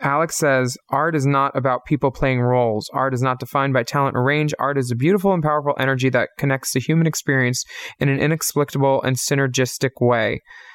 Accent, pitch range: American, 130-150 Hz